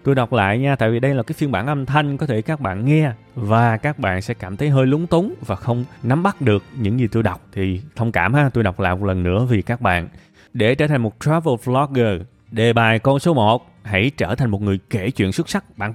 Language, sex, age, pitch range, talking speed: Vietnamese, male, 20-39, 110-155 Hz, 265 wpm